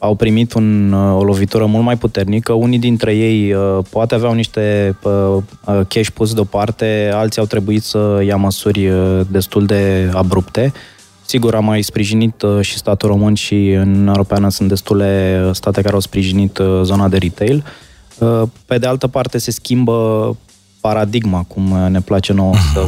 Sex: male